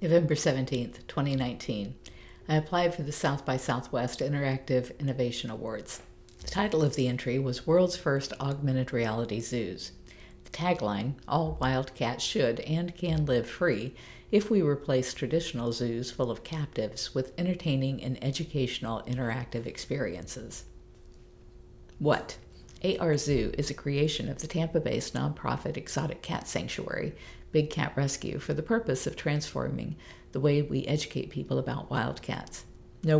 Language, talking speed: English, 140 wpm